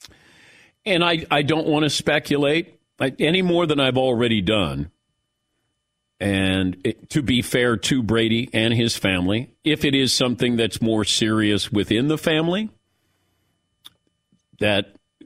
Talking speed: 130 wpm